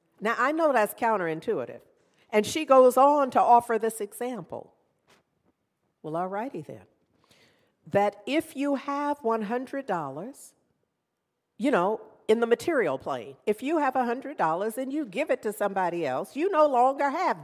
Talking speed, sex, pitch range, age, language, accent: 145 wpm, female, 195-275 Hz, 50-69, English, American